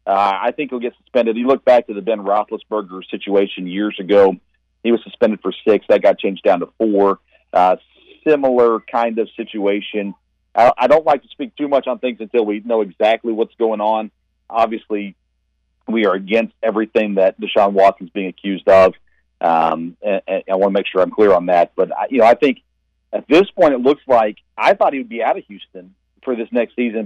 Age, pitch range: 40-59, 95-120 Hz